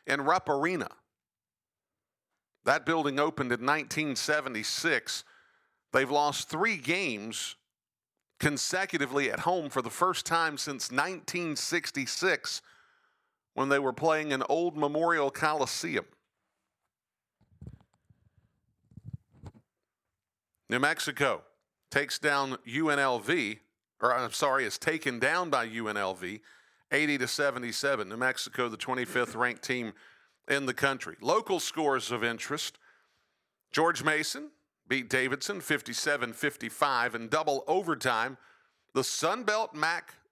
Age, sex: 50-69, male